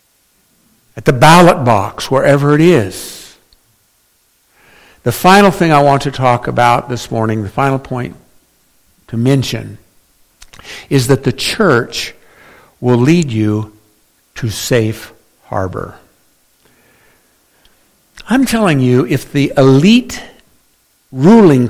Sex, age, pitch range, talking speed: male, 60-79, 110-145 Hz, 110 wpm